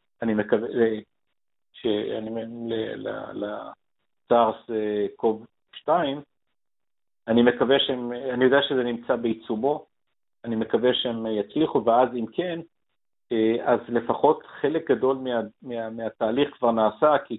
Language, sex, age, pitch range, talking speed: Hebrew, male, 50-69, 110-125 Hz, 115 wpm